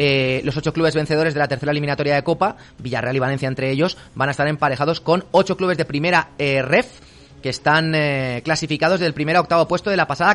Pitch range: 145-190 Hz